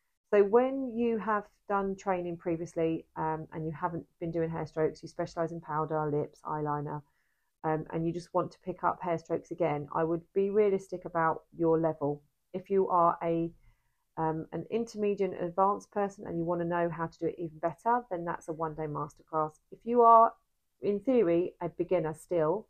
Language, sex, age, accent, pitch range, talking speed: English, female, 30-49, British, 160-185 Hz, 190 wpm